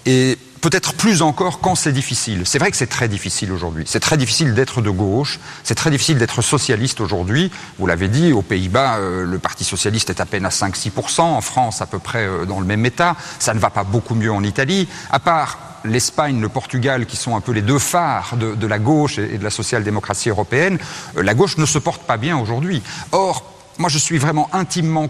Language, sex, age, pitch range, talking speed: French, male, 40-59, 115-160 Hz, 220 wpm